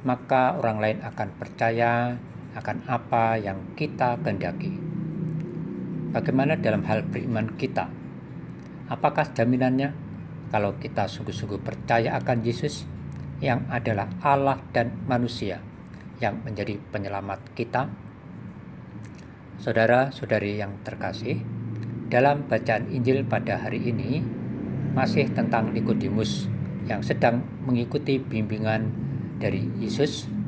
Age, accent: 50-69, native